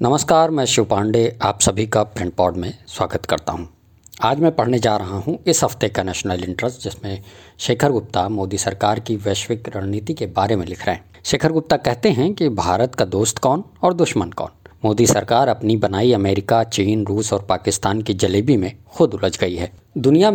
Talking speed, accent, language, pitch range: 190 wpm, Indian, English, 100-130 Hz